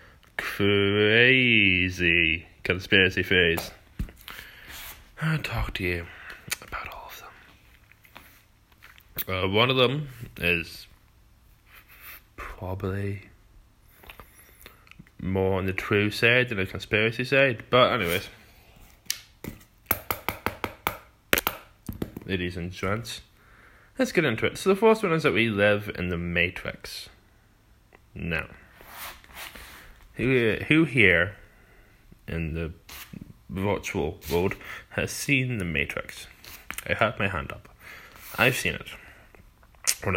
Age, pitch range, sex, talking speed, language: 20-39, 90-110 Hz, male, 100 wpm, English